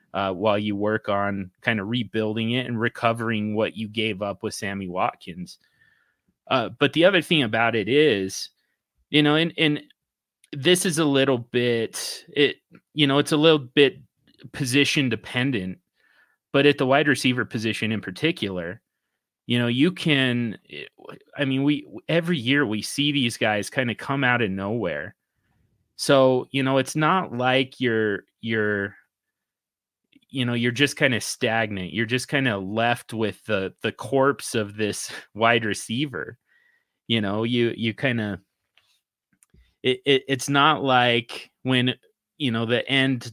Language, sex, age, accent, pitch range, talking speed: English, male, 30-49, American, 105-135 Hz, 160 wpm